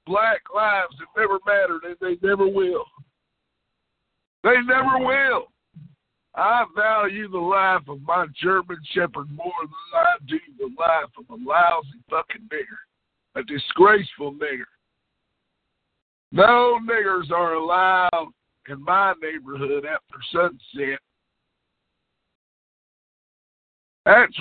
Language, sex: English, male